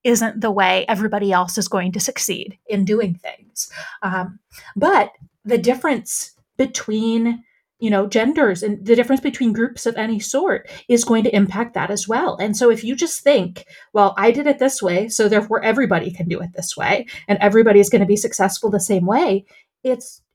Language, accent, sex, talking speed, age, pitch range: English, American, female, 195 wpm, 30-49, 200-245 Hz